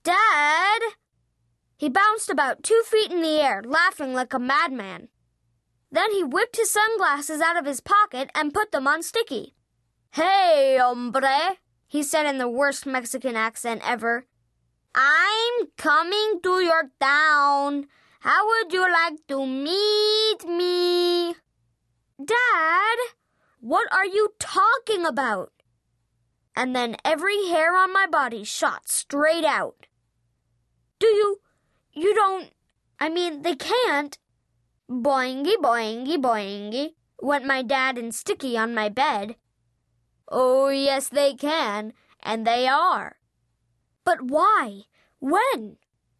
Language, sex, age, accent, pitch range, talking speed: English, female, 20-39, American, 240-370 Hz, 120 wpm